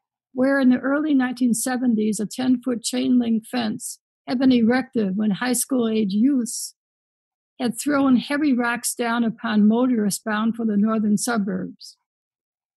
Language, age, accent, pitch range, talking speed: English, 60-79, American, 215-255 Hz, 130 wpm